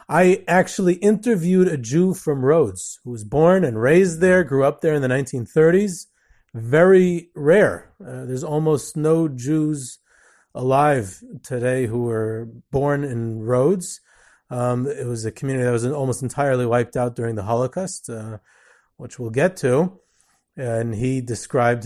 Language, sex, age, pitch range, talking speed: English, male, 30-49, 115-155 Hz, 150 wpm